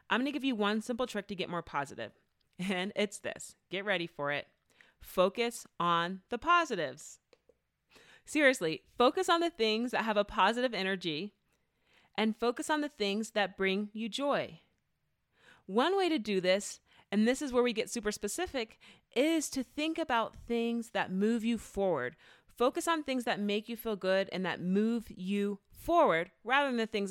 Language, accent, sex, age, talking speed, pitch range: English, American, female, 30-49, 180 wpm, 180-245 Hz